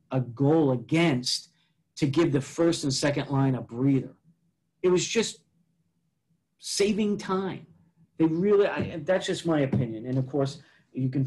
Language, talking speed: English, 155 wpm